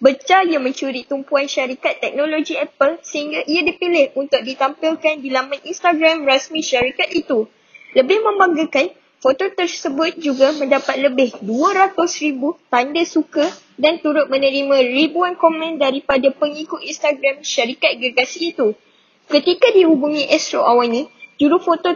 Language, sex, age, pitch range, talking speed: Malay, female, 20-39, 255-315 Hz, 125 wpm